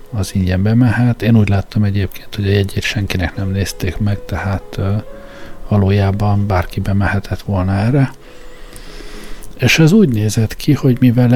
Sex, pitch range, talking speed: male, 100-125 Hz, 155 wpm